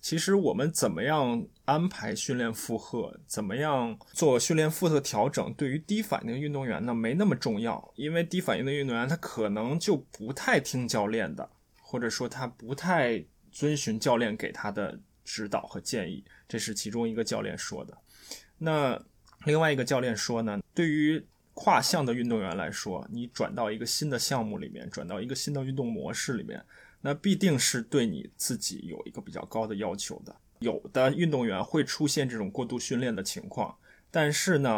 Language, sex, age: Chinese, male, 20-39